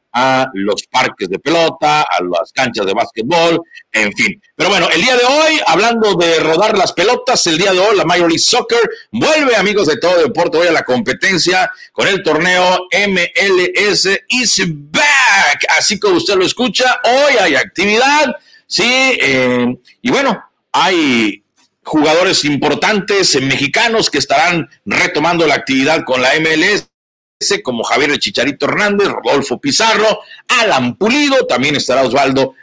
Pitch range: 150-245 Hz